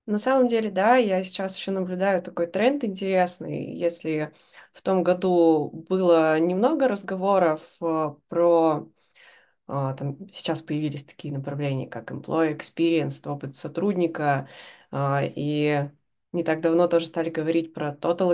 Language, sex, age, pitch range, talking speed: Russian, female, 20-39, 160-185 Hz, 120 wpm